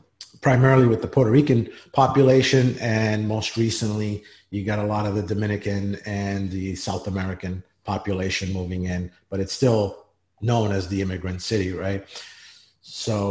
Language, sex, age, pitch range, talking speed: English, male, 30-49, 95-115 Hz, 150 wpm